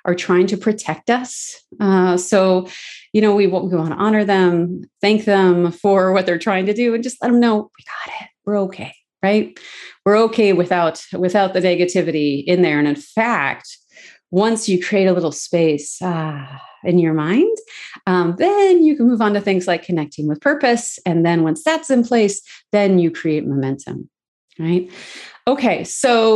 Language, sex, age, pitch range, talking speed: English, female, 30-49, 175-240 Hz, 180 wpm